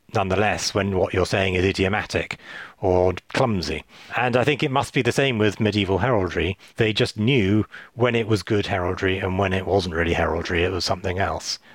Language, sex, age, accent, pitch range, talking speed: English, male, 40-59, British, 95-125 Hz, 195 wpm